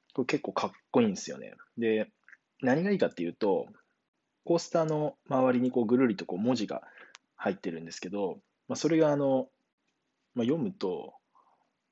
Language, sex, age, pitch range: Japanese, male, 20-39, 100-140 Hz